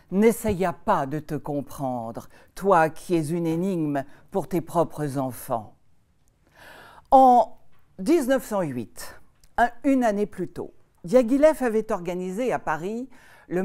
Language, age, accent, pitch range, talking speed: French, 60-79, French, 165-235 Hz, 125 wpm